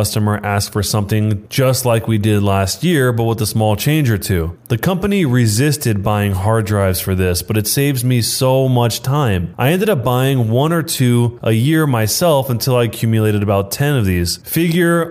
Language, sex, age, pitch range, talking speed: English, male, 20-39, 105-140 Hz, 205 wpm